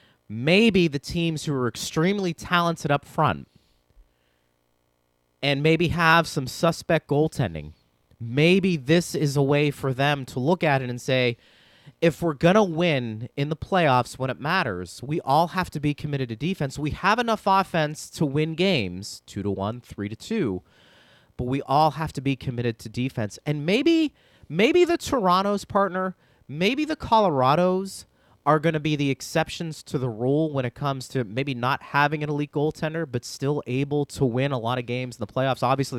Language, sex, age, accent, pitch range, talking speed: English, male, 30-49, American, 125-175 Hz, 185 wpm